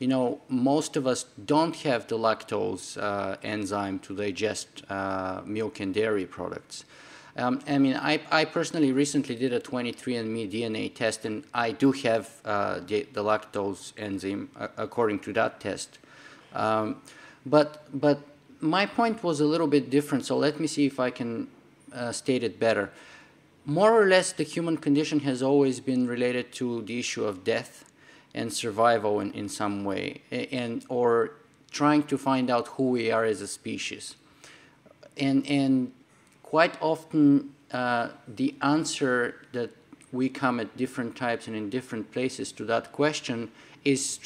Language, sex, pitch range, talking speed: English, male, 115-145 Hz, 160 wpm